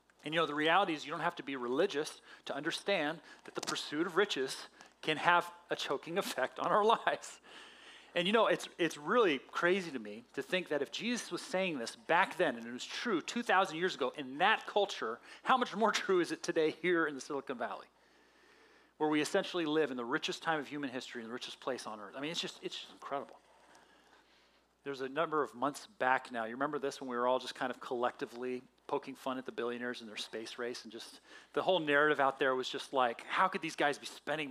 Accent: American